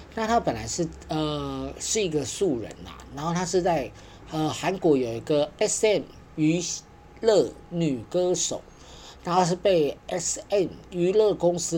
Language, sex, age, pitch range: Chinese, male, 40-59, 125-175 Hz